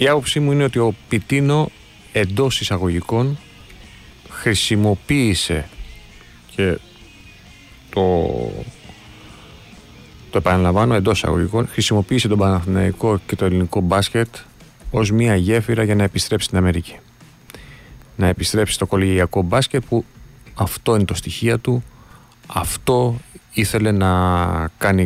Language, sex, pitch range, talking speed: Greek, male, 95-115 Hz, 110 wpm